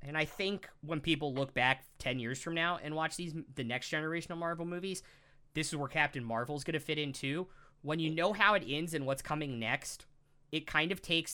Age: 20-39